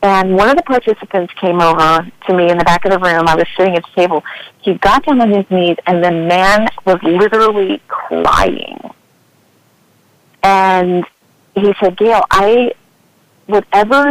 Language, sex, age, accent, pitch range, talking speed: English, female, 40-59, American, 175-210 Hz, 165 wpm